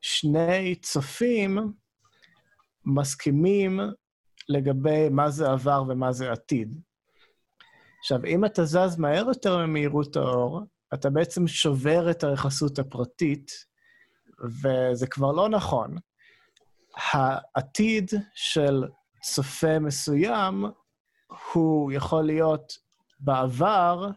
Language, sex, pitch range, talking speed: Hebrew, male, 130-170 Hz, 90 wpm